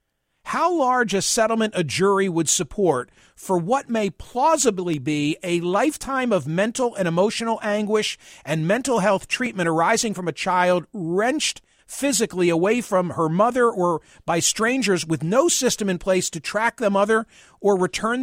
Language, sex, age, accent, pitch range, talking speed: English, male, 50-69, American, 170-230 Hz, 160 wpm